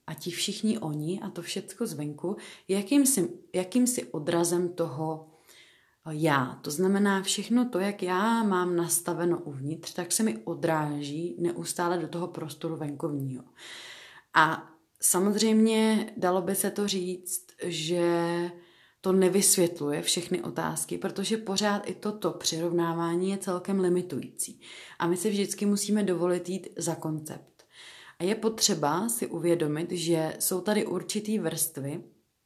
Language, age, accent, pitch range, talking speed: Czech, 30-49, native, 160-195 Hz, 130 wpm